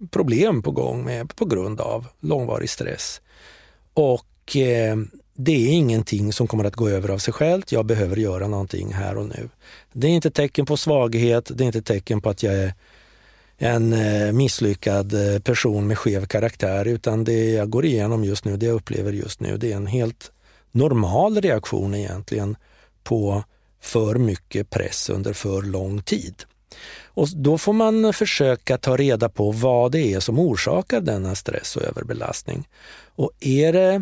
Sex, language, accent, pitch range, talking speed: male, Swedish, native, 100-130 Hz, 165 wpm